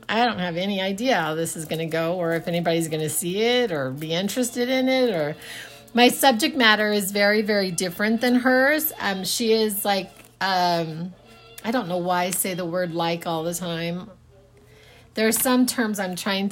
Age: 40-59